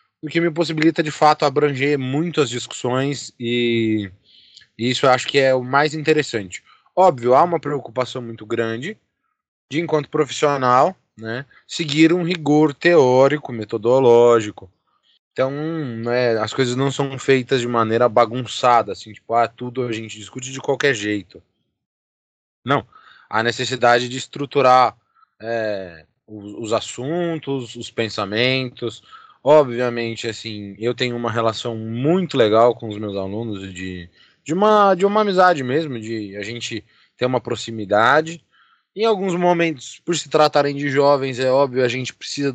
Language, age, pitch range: Portuguese, 20-39, 115-145 Hz